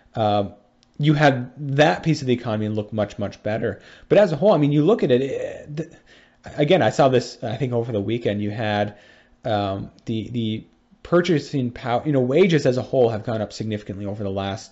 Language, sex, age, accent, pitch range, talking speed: English, male, 30-49, American, 105-135 Hz, 215 wpm